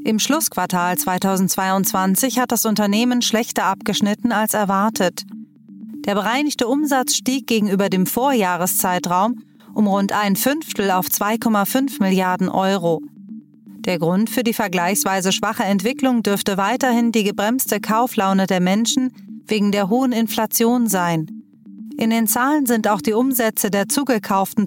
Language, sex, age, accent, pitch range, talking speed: German, female, 30-49, German, 195-240 Hz, 130 wpm